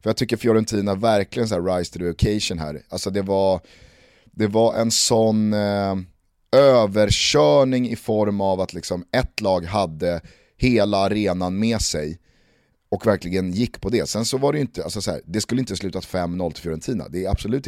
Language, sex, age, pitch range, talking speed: Swedish, male, 30-49, 85-110 Hz, 195 wpm